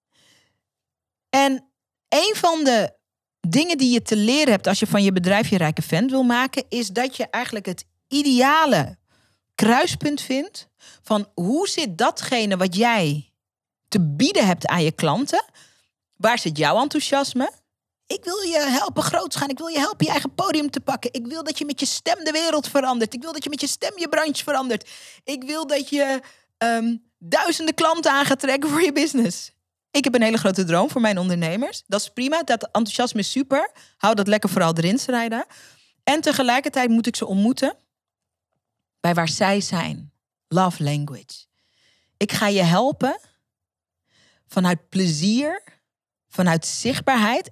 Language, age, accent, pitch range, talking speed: Dutch, 40-59, Dutch, 180-275 Hz, 170 wpm